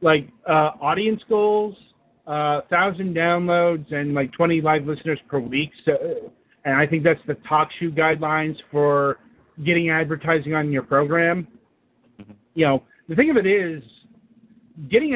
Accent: American